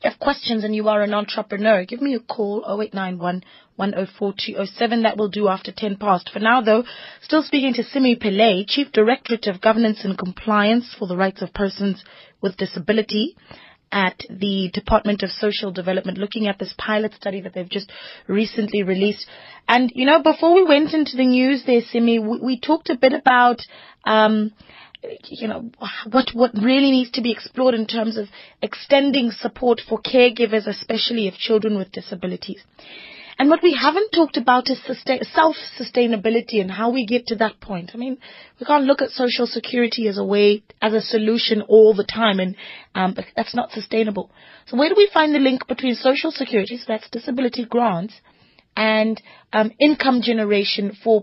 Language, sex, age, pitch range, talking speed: English, female, 30-49, 205-250 Hz, 180 wpm